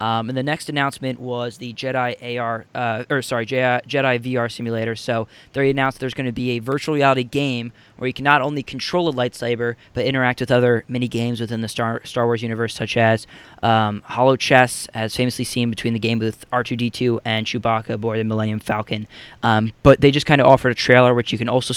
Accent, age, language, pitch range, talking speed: American, 20-39, English, 110-125 Hz, 210 wpm